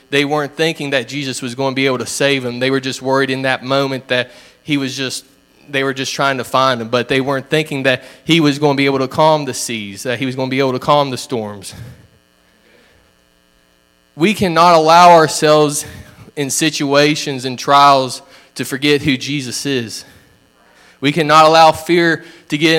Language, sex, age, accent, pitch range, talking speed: English, male, 20-39, American, 135-175 Hz, 200 wpm